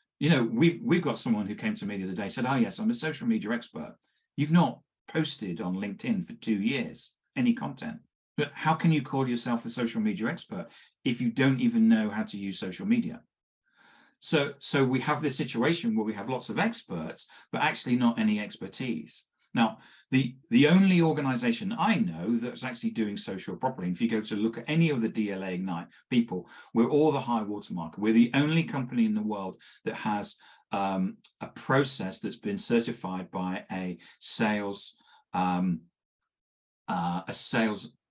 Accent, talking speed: British, 185 wpm